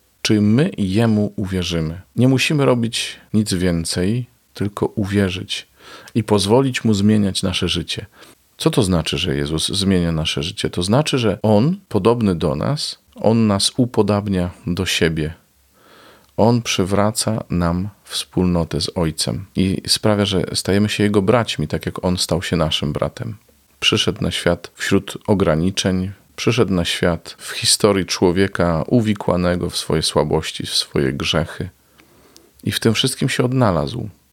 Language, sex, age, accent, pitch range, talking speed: Polish, male, 40-59, native, 90-110 Hz, 140 wpm